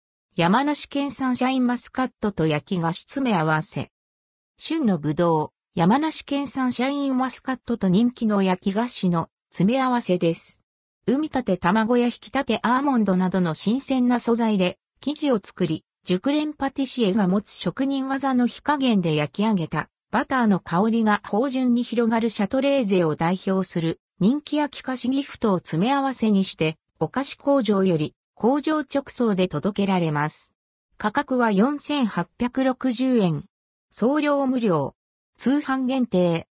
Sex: female